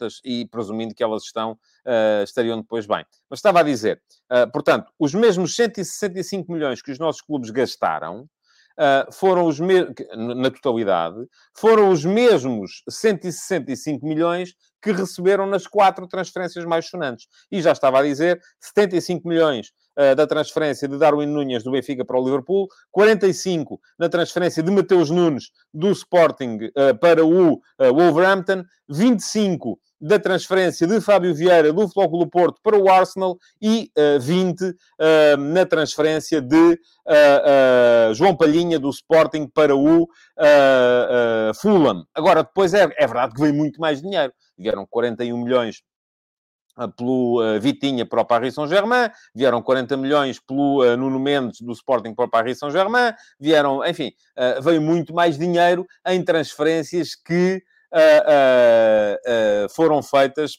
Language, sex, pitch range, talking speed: Portuguese, male, 135-185 Hz, 130 wpm